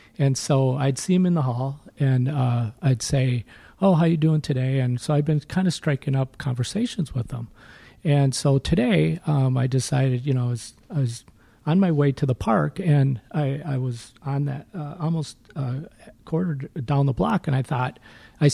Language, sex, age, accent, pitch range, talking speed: English, male, 40-59, American, 125-150 Hz, 205 wpm